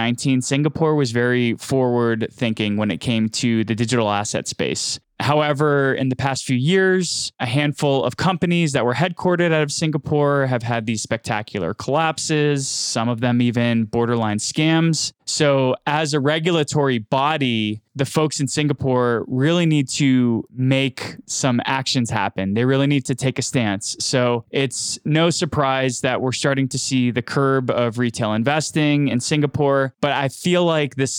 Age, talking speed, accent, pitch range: 20-39, 160 wpm, American, 120-145 Hz